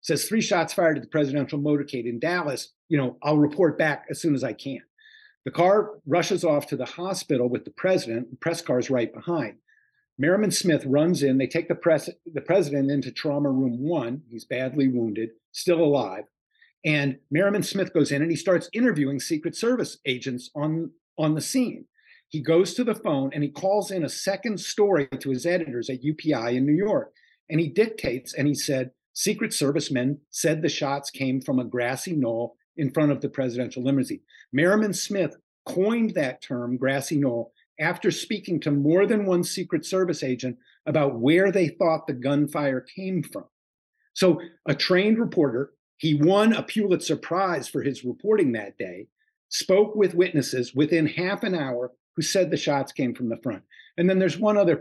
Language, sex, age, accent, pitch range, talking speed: English, male, 50-69, American, 135-185 Hz, 185 wpm